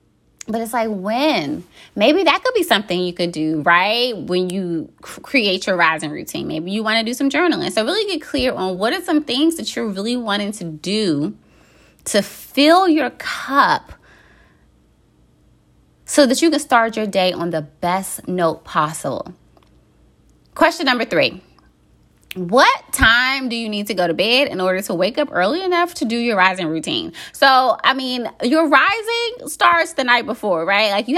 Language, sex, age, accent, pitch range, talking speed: English, female, 20-39, American, 180-275 Hz, 180 wpm